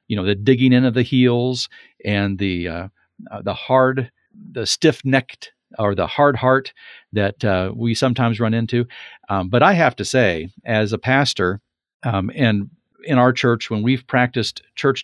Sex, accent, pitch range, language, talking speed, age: male, American, 110-140 Hz, English, 175 wpm, 50-69